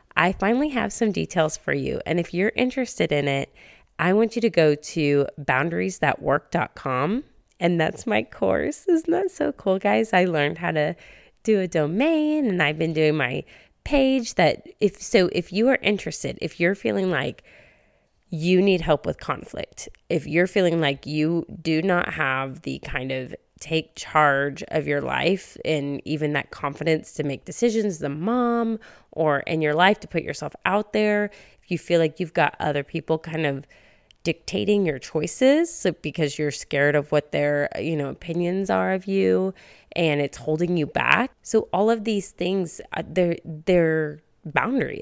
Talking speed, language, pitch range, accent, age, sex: 180 wpm, English, 150-200 Hz, American, 20-39, female